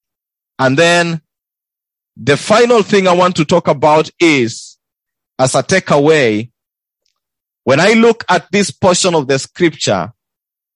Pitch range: 130-175 Hz